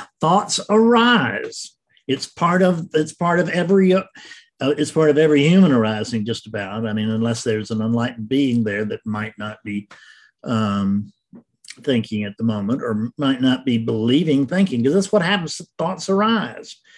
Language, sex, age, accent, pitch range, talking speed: English, male, 50-69, American, 120-185 Hz, 165 wpm